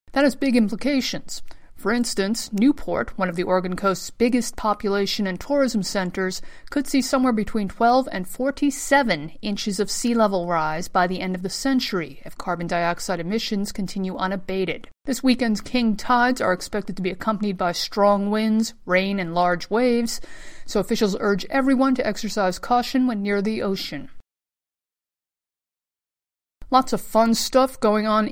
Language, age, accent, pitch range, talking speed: English, 50-69, American, 195-245 Hz, 155 wpm